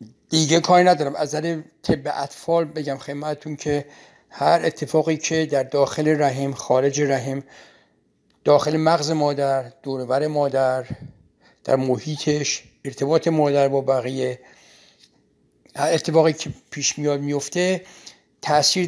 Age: 60-79